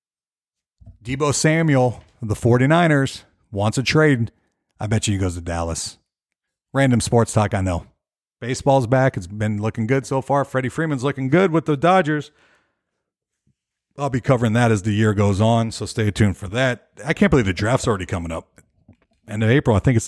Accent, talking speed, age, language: American, 190 wpm, 50-69, English